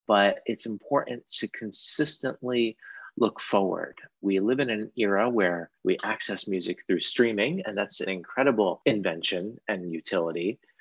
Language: English